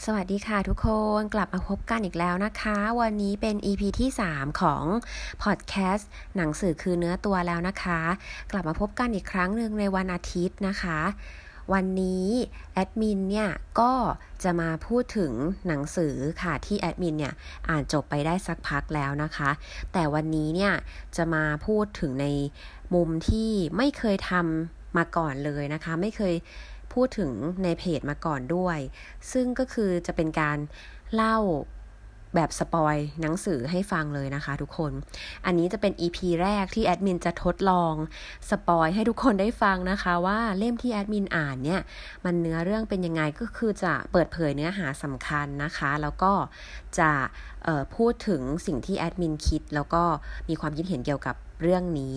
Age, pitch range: 20-39, 155-200 Hz